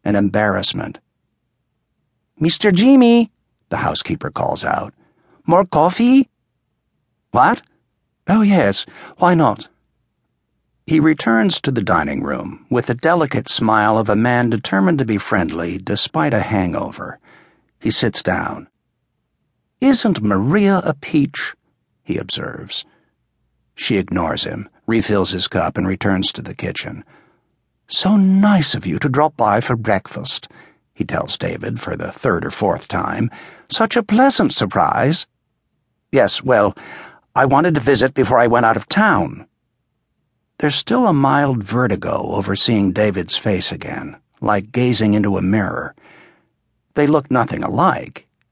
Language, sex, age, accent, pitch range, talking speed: English, male, 60-79, American, 105-165 Hz, 135 wpm